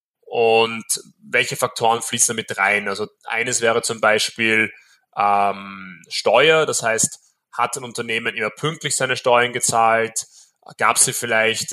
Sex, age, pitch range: male, 20-39, 115-135 Hz